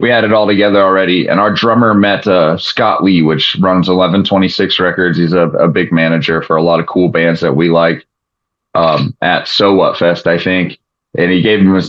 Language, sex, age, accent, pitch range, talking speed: English, male, 20-39, American, 85-100 Hz, 215 wpm